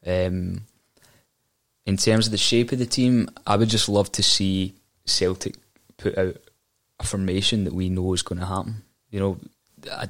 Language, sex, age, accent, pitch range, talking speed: English, male, 20-39, British, 95-115 Hz, 180 wpm